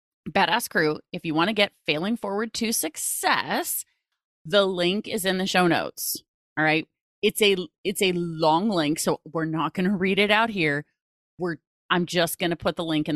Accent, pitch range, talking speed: American, 150-190 Hz, 200 wpm